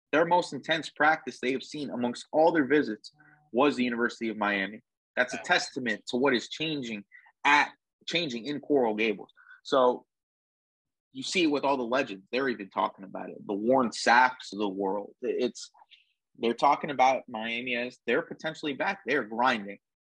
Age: 30-49